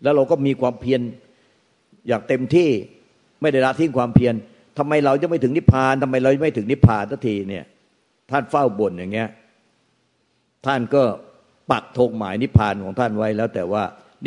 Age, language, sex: 60-79, Thai, male